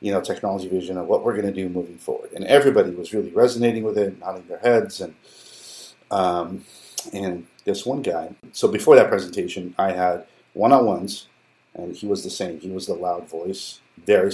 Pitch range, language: 95-130 Hz, English